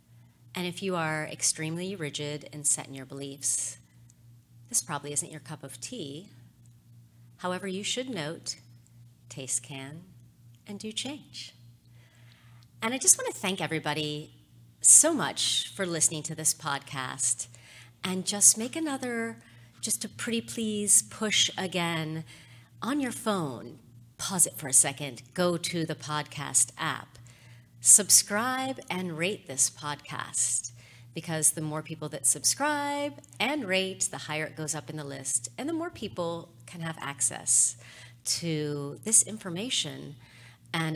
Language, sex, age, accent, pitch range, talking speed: English, female, 40-59, American, 120-180 Hz, 140 wpm